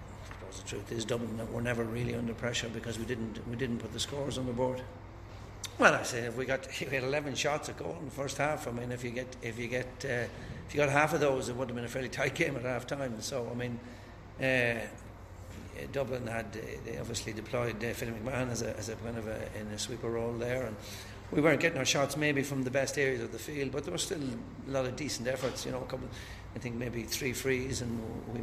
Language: English